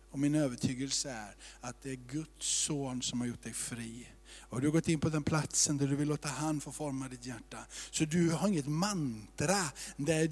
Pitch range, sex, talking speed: 135-165 Hz, male, 215 wpm